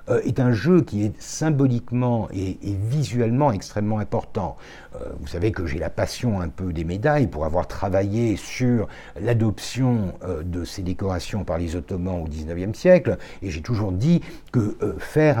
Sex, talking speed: male, 155 wpm